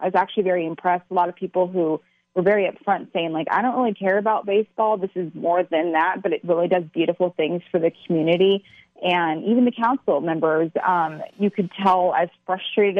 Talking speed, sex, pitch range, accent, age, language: 210 wpm, female, 165-190 Hz, American, 30-49, English